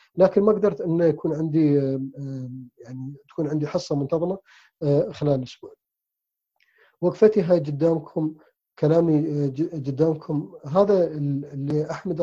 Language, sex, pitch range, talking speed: Arabic, male, 145-180 Hz, 105 wpm